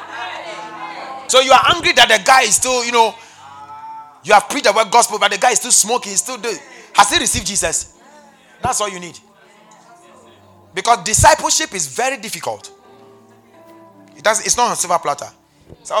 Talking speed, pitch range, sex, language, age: 175 wpm, 165-275 Hz, male, English, 30-49